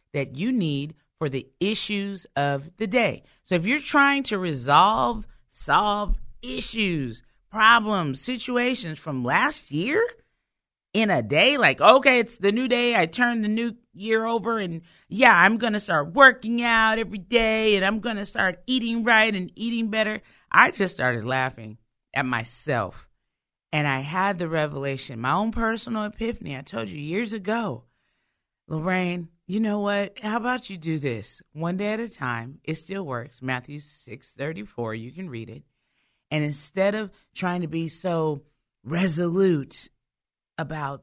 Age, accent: 40-59, American